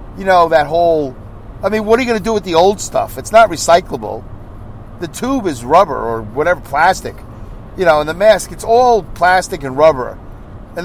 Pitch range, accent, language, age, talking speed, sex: 115-180 Hz, American, English, 50-69, 205 wpm, male